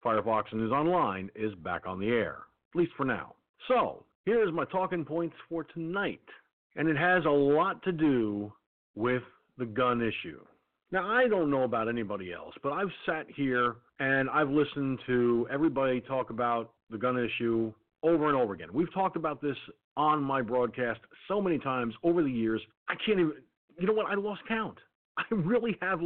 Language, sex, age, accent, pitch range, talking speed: English, male, 50-69, American, 125-170 Hz, 185 wpm